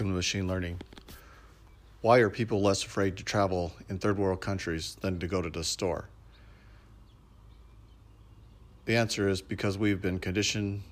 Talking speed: 145 wpm